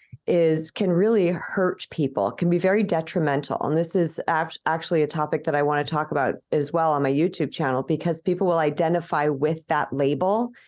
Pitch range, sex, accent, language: 150-180 Hz, female, American, English